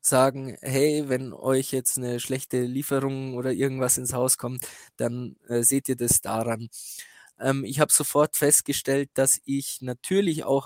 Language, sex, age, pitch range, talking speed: German, male, 20-39, 125-150 Hz, 160 wpm